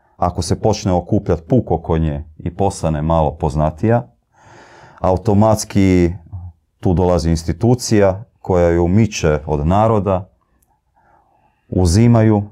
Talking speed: 95 wpm